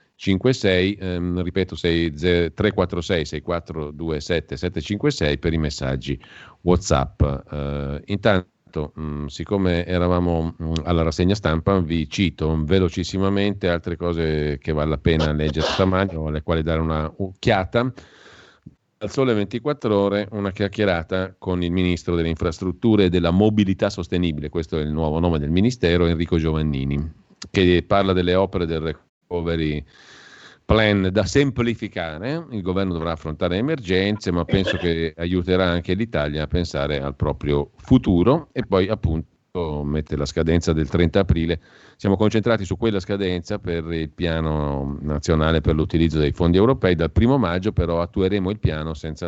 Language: Italian